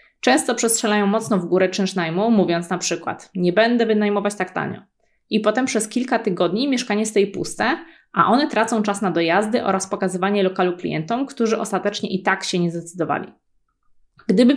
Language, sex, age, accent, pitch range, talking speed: Polish, female, 20-39, native, 185-230 Hz, 170 wpm